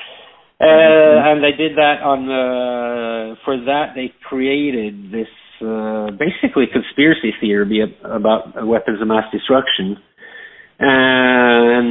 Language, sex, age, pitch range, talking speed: English, male, 50-69, 115-155 Hz, 110 wpm